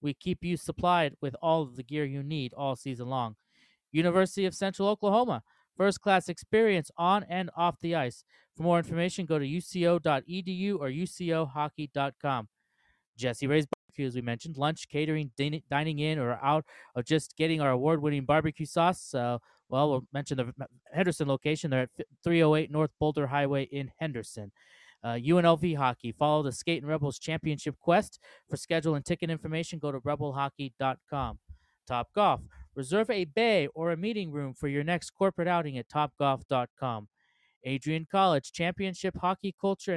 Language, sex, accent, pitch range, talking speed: English, male, American, 140-175 Hz, 155 wpm